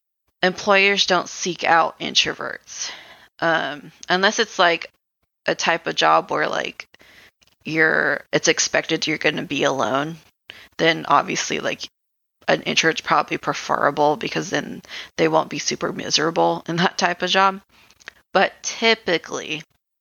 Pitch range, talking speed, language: 165-190 Hz, 130 wpm, English